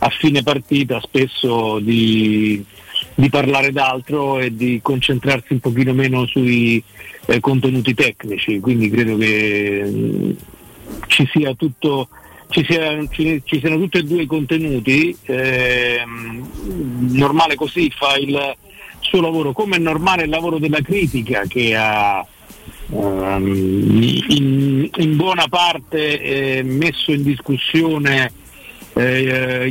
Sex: male